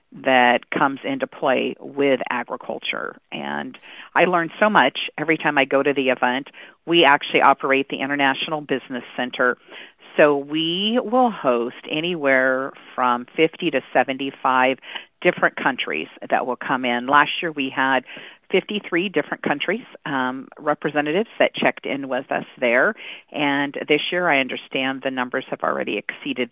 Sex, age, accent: female, 40-59, American